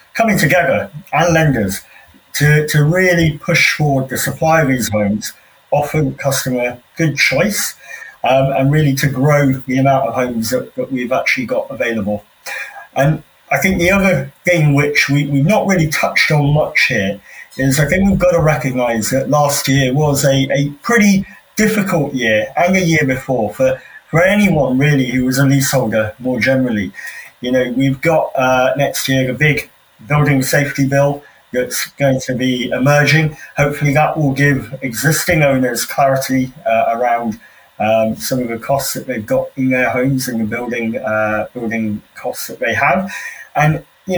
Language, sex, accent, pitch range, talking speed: English, male, British, 130-160 Hz, 175 wpm